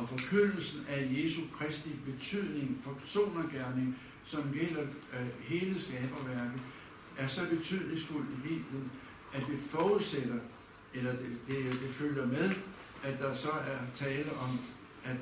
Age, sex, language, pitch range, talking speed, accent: 70-89, male, Danish, 130-160 Hz, 130 wpm, native